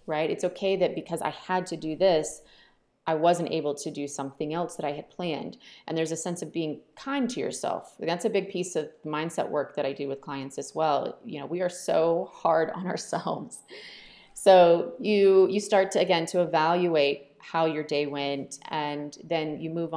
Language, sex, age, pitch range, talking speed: English, female, 30-49, 150-190 Hz, 205 wpm